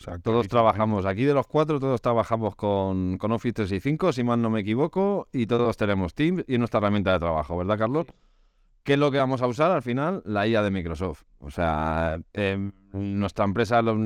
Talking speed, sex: 200 wpm, male